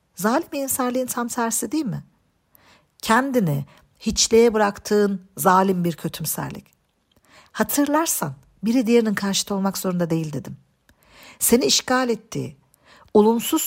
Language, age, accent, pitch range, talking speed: Turkish, 50-69, native, 195-250 Hz, 105 wpm